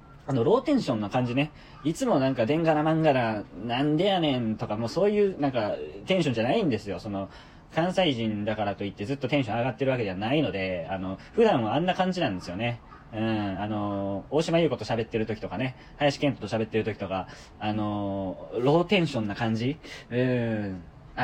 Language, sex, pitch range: Japanese, male, 105-145 Hz